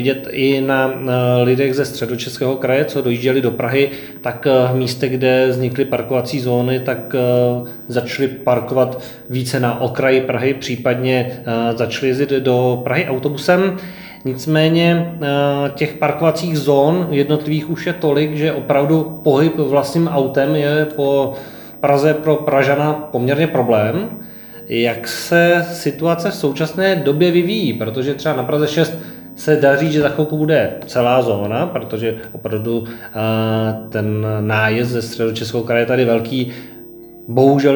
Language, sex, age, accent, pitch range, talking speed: Czech, male, 20-39, native, 125-155 Hz, 130 wpm